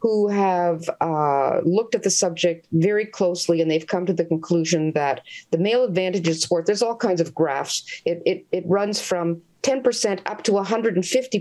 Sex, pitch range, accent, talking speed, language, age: female, 165-225 Hz, American, 190 wpm, English, 50-69